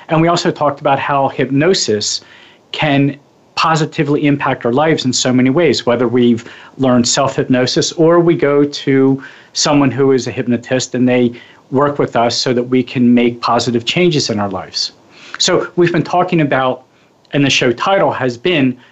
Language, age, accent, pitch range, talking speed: English, 40-59, American, 125-155 Hz, 175 wpm